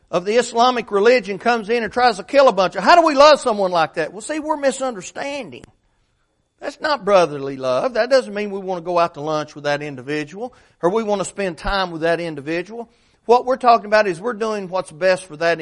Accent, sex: American, male